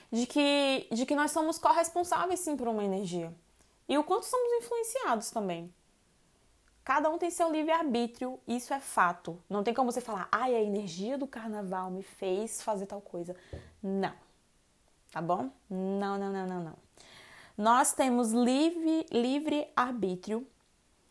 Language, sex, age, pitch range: Portuguese, female, 20-39, 205-275 Hz